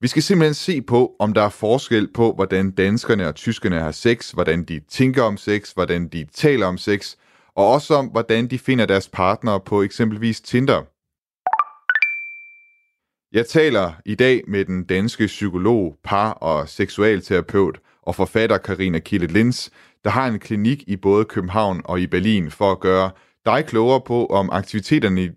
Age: 30-49